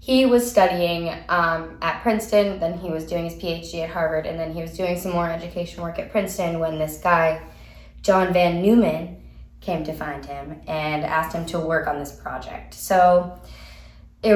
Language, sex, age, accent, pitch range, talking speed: English, female, 10-29, American, 160-185 Hz, 190 wpm